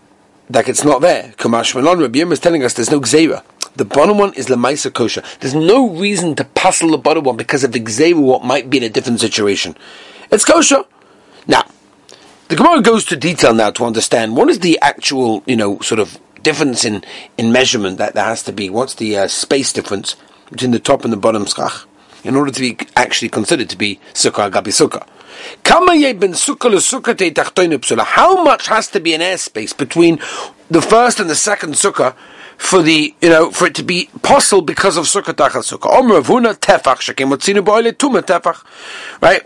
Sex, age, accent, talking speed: male, 40-59, British, 185 wpm